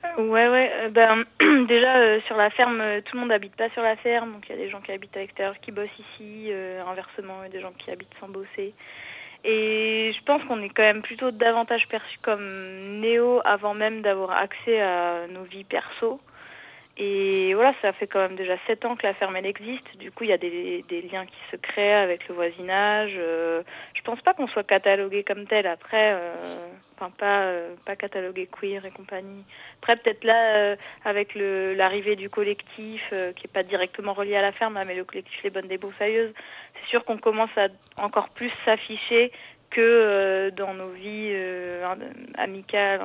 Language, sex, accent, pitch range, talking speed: French, female, French, 190-225 Hz, 205 wpm